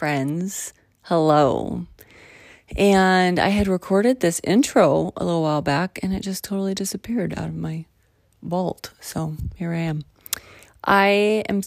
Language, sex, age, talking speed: English, female, 30-49, 140 wpm